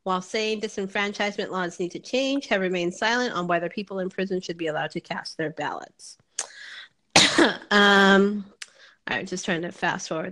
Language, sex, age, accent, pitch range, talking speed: English, female, 30-49, American, 180-215 Hz, 175 wpm